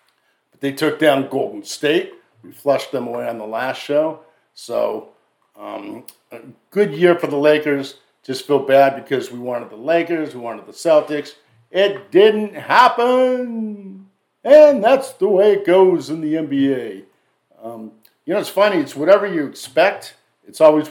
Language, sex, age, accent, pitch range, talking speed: English, male, 50-69, American, 125-170 Hz, 160 wpm